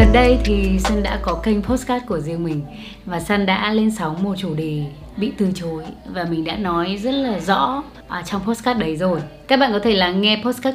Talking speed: 230 wpm